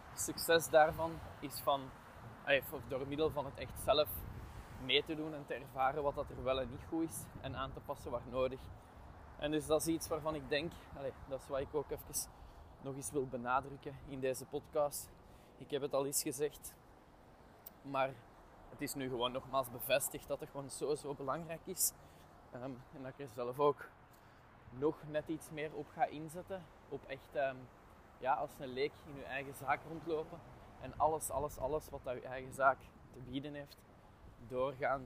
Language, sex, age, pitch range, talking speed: Dutch, male, 20-39, 120-145 Hz, 185 wpm